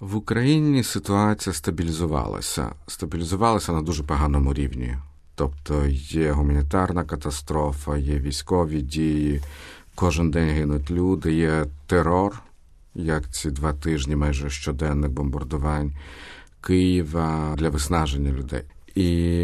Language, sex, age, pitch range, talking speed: Ukrainian, male, 50-69, 75-85 Hz, 105 wpm